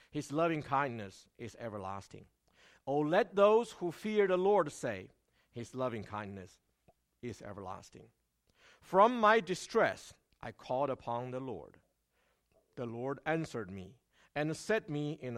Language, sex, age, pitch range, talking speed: English, male, 50-69, 110-165 Hz, 125 wpm